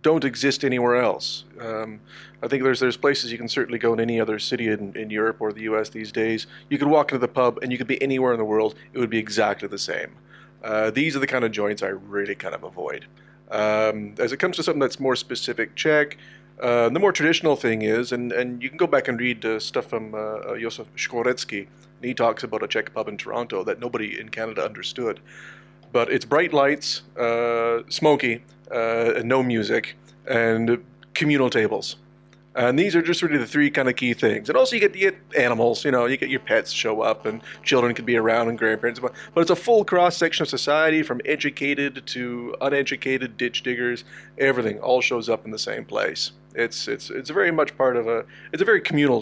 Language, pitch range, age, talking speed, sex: English, 115-145 Hz, 30-49, 220 wpm, male